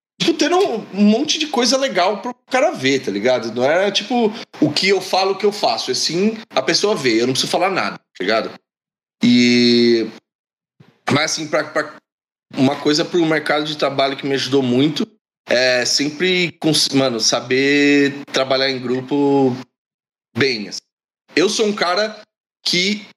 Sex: male